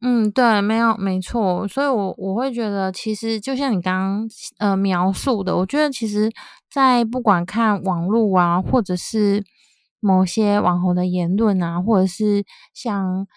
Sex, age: female, 20-39